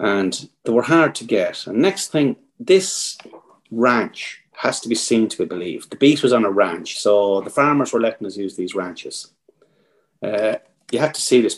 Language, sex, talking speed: English, male, 200 wpm